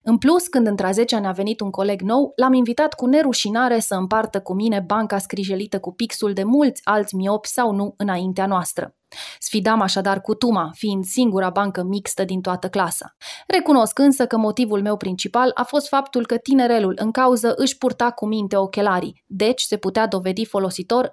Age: 20-39